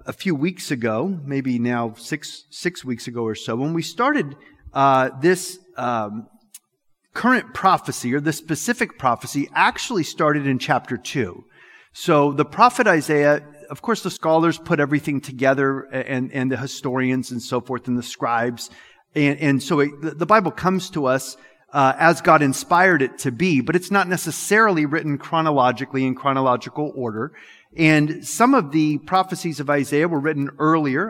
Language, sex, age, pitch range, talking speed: English, male, 40-59, 130-170 Hz, 165 wpm